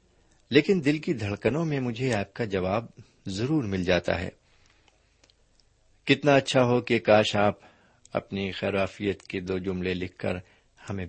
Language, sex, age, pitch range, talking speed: Urdu, male, 50-69, 95-120 Hz, 145 wpm